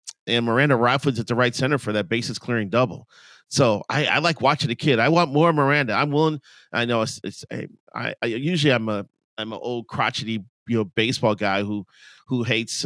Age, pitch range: 40-59, 110-130 Hz